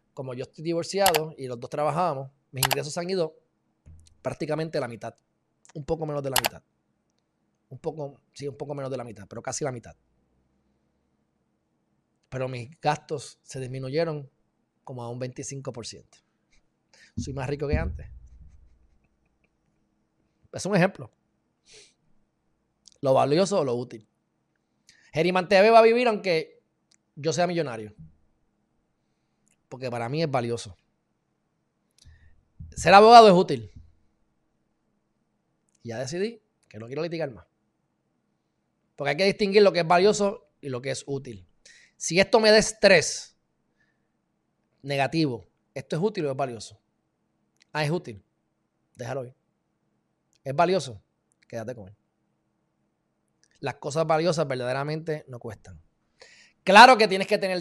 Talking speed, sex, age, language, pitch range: 130 wpm, male, 20-39, Spanish, 115-165 Hz